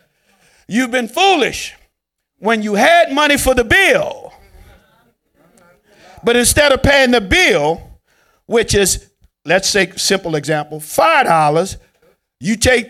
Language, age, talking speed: English, 50-69, 120 wpm